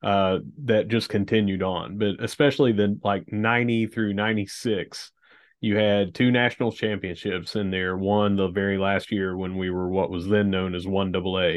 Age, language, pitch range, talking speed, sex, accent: 30-49, English, 100-115 Hz, 170 wpm, male, American